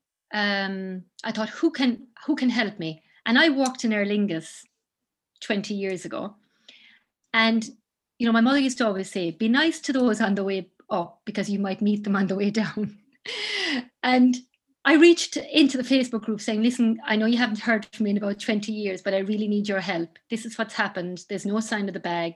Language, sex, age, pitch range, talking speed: English, female, 30-49, 195-240 Hz, 215 wpm